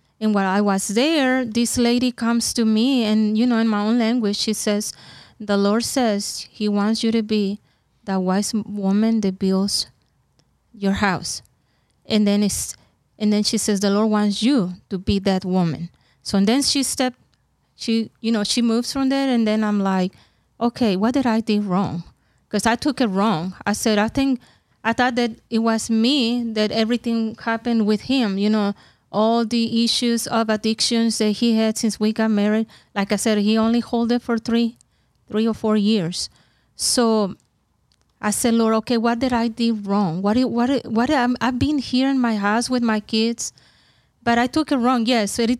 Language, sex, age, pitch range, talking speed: English, female, 30-49, 205-235 Hz, 200 wpm